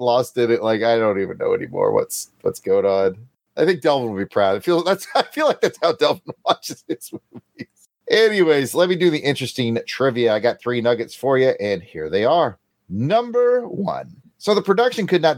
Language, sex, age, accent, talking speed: English, male, 30-49, American, 205 wpm